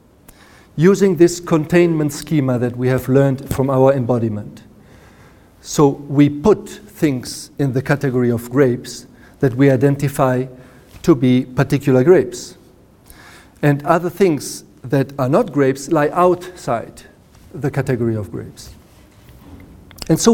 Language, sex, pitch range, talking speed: English, male, 125-170 Hz, 125 wpm